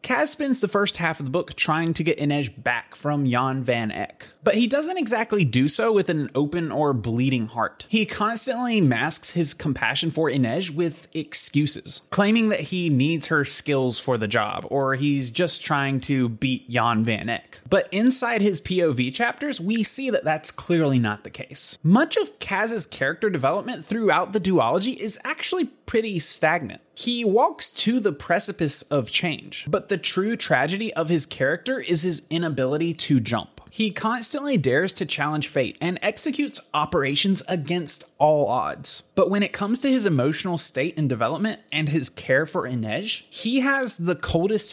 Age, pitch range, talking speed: 20-39, 140-210 Hz, 175 wpm